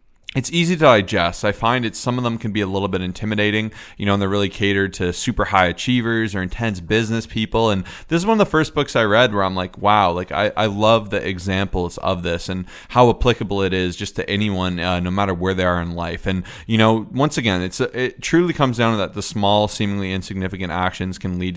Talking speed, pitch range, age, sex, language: 240 wpm, 90-110 Hz, 20-39, male, English